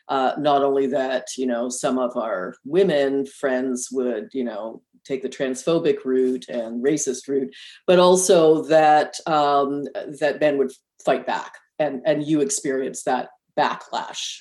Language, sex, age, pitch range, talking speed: English, female, 40-59, 140-165 Hz, 150 wpm